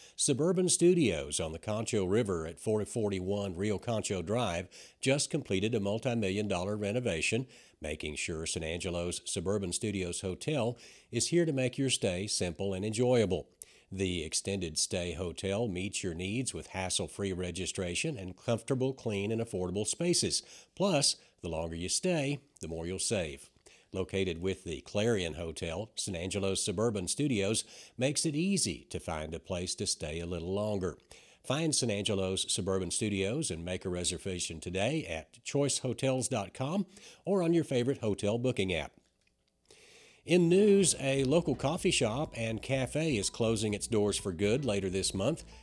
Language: English